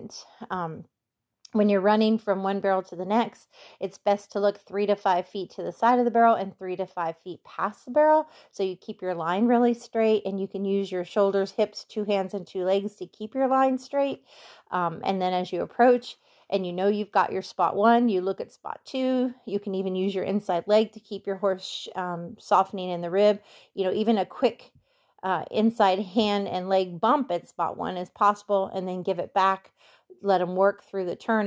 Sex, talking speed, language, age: female, 225 wpm, English, 30-49